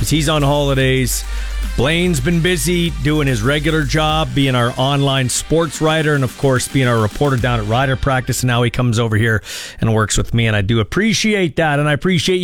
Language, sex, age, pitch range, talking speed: English, male, 40-59, 130-195 Hz, 205 wpm